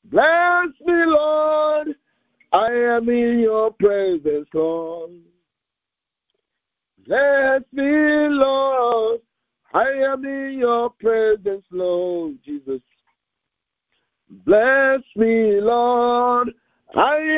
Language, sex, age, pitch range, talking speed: English, male, 50-69, 175-275 Hz, 80 wpm